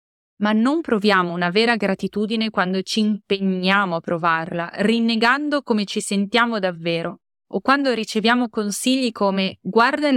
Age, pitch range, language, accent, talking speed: 20-39, 190-245 Hz, Italian, native, 135 wpm